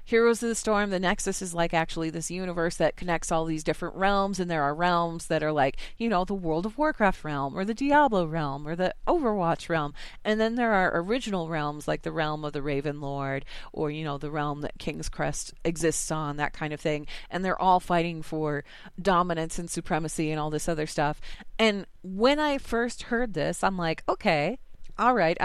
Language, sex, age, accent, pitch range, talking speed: English, female, 30-49, American, 160-210 Hz, 210 wpm